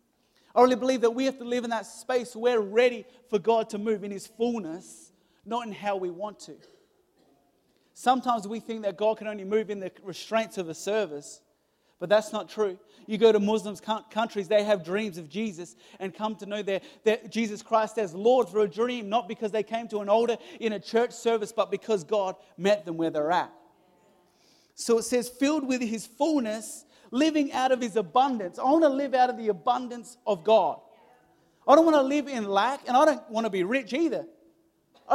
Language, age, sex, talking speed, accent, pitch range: English, 40-59, male, 215 wpm, Australian, 210-255 Hz